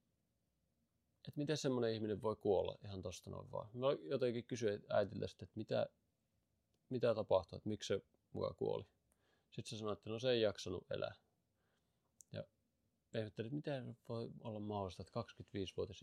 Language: Finnish